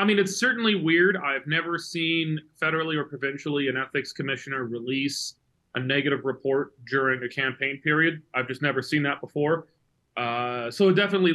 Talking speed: 170 wpm